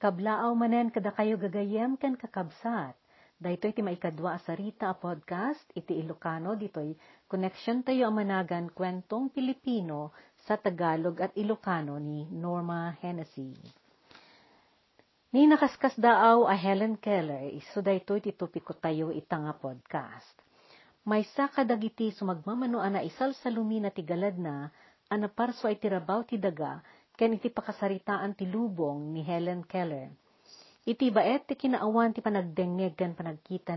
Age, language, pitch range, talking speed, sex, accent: 50-69, Filipino, 170-225 Hz, 125 wpm, female, native